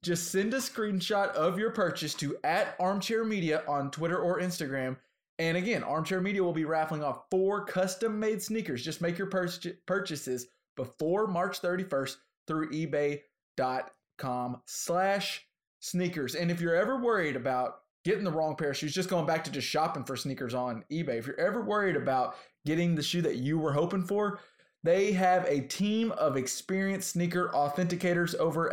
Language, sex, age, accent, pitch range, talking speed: English, male, 20-39, American, 140-185 Hz, 175 wpm